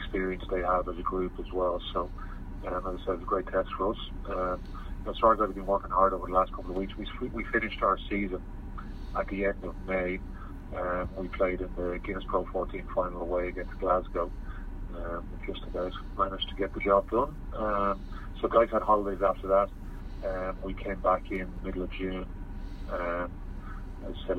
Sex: male